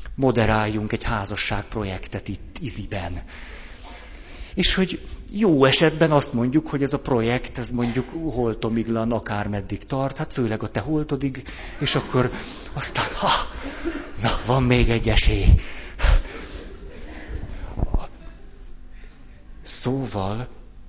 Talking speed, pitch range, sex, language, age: 105 wpm, 105-135 Hz, male, Hungarian, 60-79